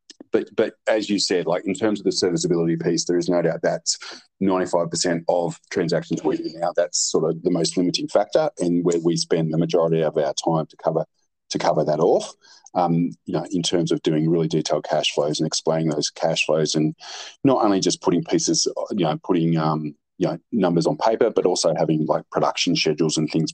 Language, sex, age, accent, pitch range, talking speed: English, male, 30-49, Australian, 80-90 Hz, 215 wpm